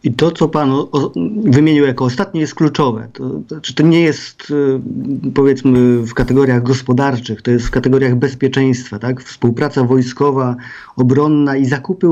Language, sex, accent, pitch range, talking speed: Polish, male, native, 125-145 Hz, 165 wpm